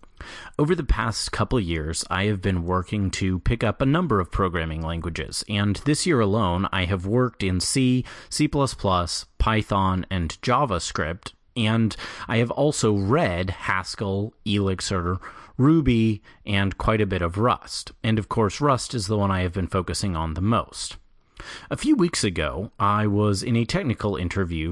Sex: male